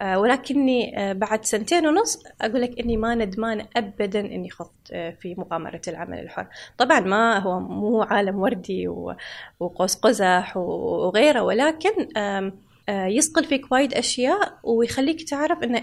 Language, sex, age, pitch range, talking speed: Arabic, female, 20-39, 200-275 Hz, 125 wpm